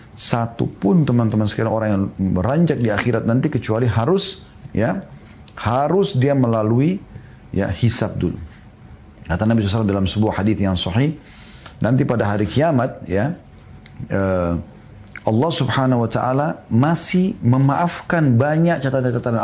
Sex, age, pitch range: male, 40-59, 100-135 Hz